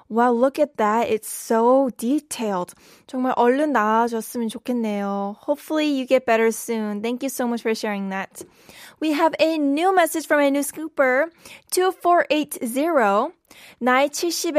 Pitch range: 240-300 Hz